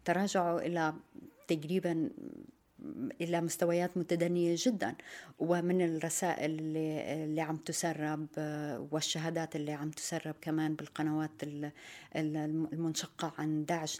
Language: Arabic